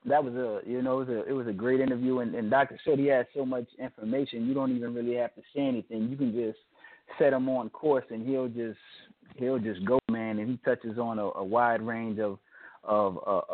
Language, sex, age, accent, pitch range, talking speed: English, male, 20-39, American, 110-130 Hz, 240 wpm